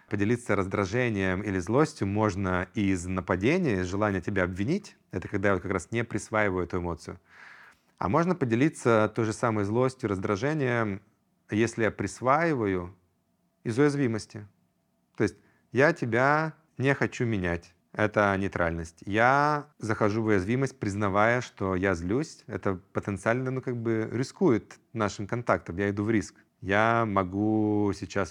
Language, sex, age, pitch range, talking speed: Russian, male, 30-49, 95-120 Hz, 140 wpm